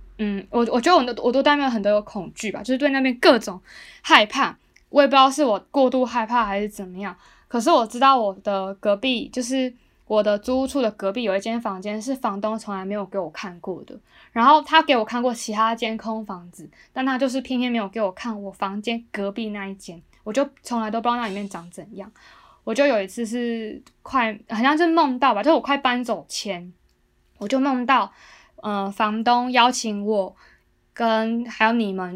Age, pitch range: 10-29, 205-260 Hz